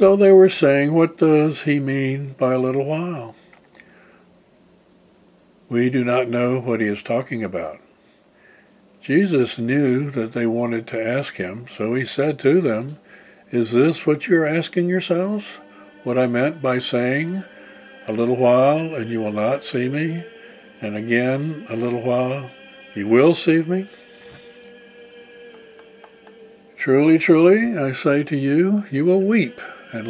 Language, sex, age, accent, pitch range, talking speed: English, male, 60-79, American, 125-200 Hz, 150 wpm